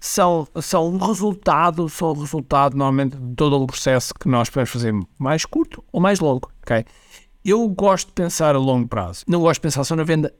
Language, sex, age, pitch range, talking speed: Portuguese, male, 60-79, 145-185 Hz, 200 wpm